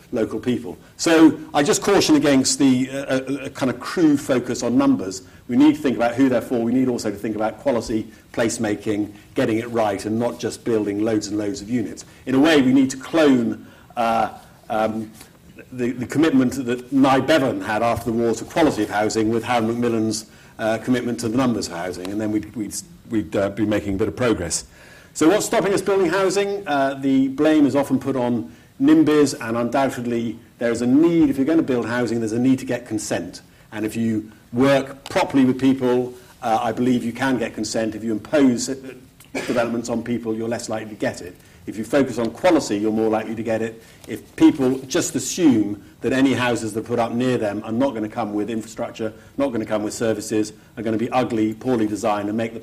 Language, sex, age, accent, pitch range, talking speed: English, male, 50-69, British, 110-130 Hz, 220 wpm